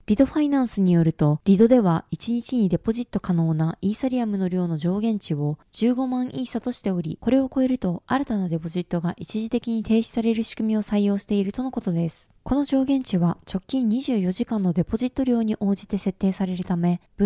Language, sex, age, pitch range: Japanese, female, 20-39, 185-240 Hz